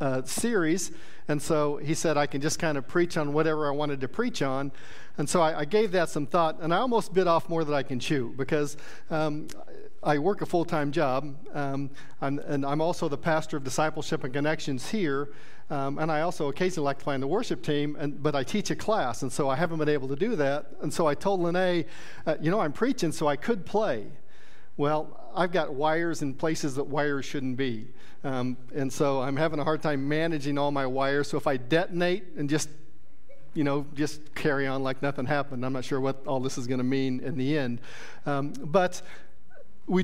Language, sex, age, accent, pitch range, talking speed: English, male, 40-59, American, 140-165 Hz, 220 wpm